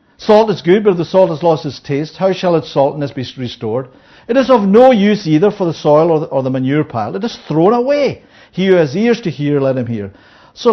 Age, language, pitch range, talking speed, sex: 60-79, English, 155-245 Hz, 245 wpm, male